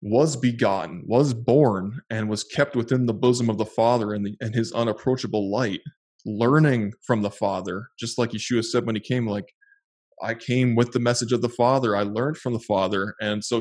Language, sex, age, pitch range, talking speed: English, male, 20-39, 105-120 Hz, 205 wpm